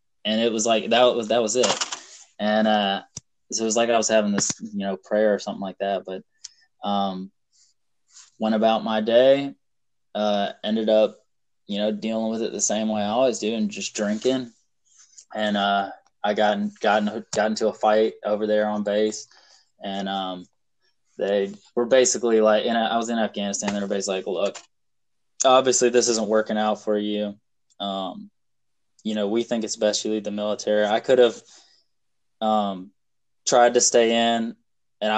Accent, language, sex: American, English, male